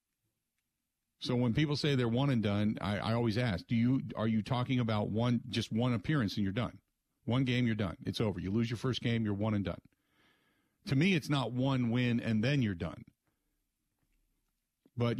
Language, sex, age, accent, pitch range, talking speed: English, male, 50-69, American, 95-135 Hz, 200 wpm